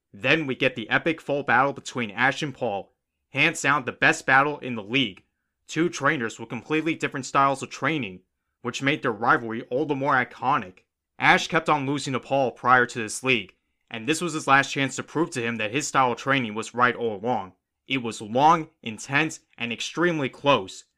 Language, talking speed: English, 205 wpm